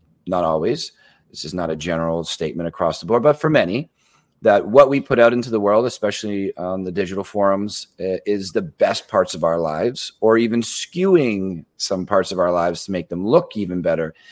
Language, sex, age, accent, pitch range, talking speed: English, male, 30-49, American, 90-120 Hz, 200 wpm